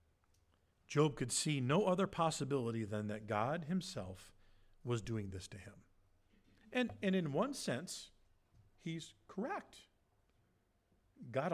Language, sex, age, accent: English, male, 50-69, American